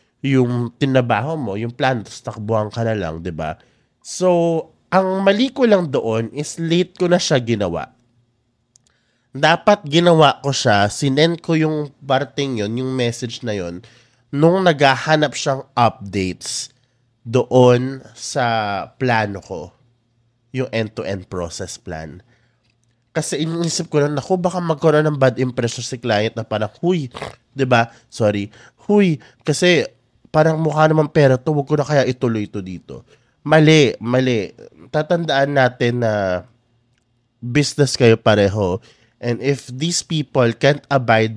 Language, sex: Filipino, male